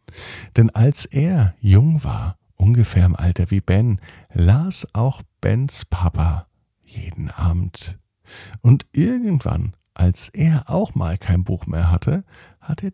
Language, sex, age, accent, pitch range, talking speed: German, male, 50-69, German, 90-115 Hz, 130 wpm